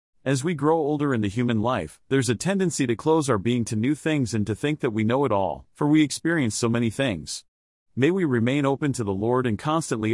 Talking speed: 245 wpm